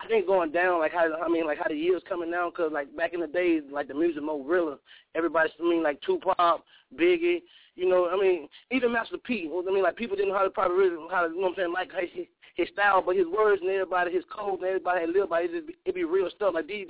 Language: English